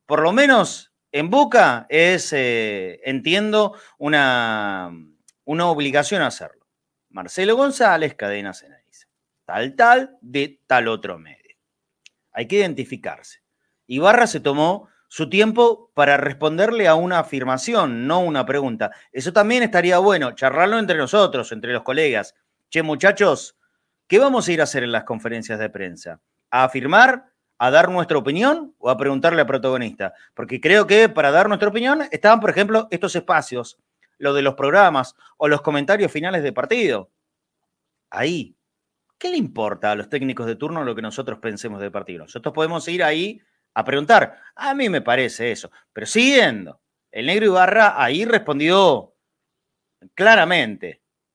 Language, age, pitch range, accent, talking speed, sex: Spanish, 30-49, 130-210 Hz, Argentinian, 150 wpm, male